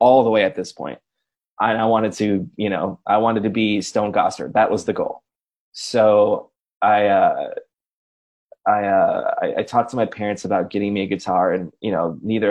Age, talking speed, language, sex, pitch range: 20-39, 205 wpm, English, male, 100-115 Hz